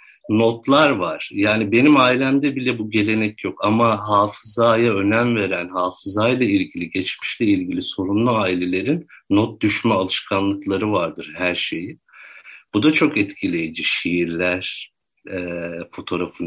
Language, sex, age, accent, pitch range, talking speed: Turkish, male, 60-79, native, 90-115 Hz, 115 wpm